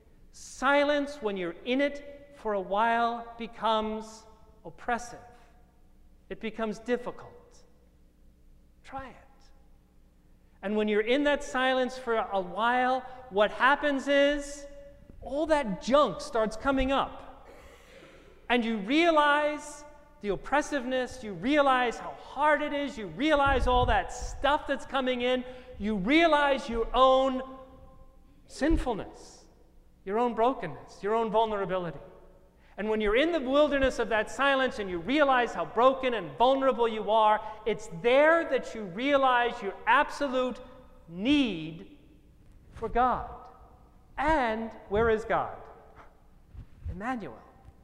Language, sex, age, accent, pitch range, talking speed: English, male, 40-59, American, 195-270 Hz, 120 wpm